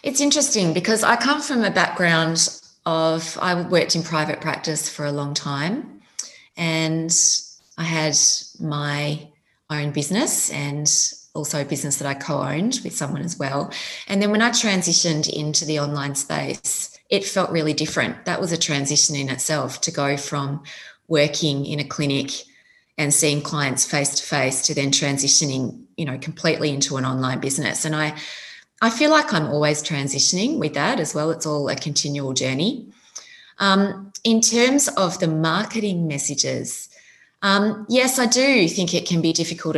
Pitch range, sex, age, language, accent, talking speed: 150-195 Hz, female, 30-49, English, Australian, 165 wpm